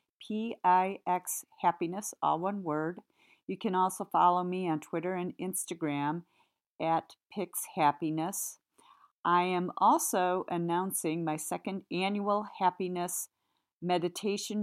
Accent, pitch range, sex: American, 155-190 Hz, female